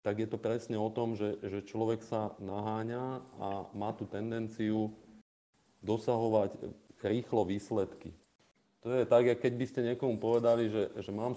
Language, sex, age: Slovak, male, 40-59